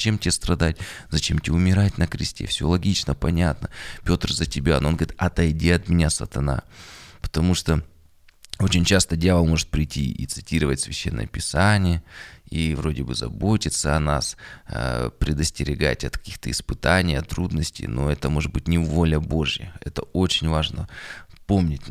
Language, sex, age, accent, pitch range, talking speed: Russian, male, 20-39, native, 80-95 Hz, 155 wpm